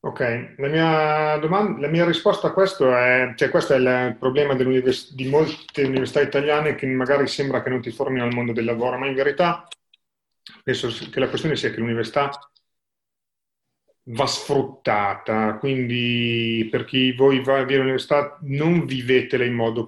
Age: 30-49